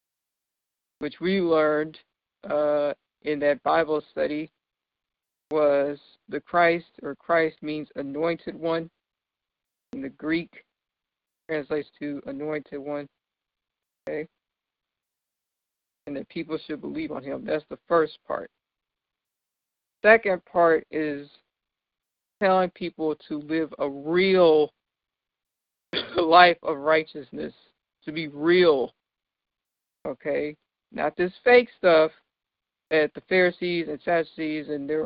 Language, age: English, 50-69